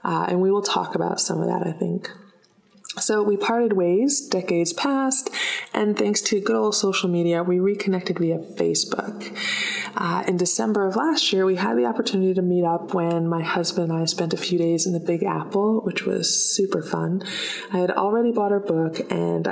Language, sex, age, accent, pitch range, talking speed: English, female, 20-39, American, 175-210 Hz, 200 wpm